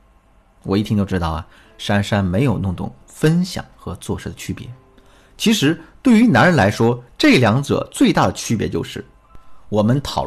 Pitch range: 100-140 Hz